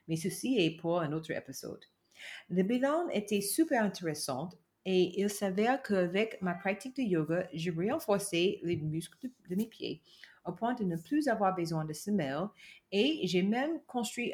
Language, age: French, 30-49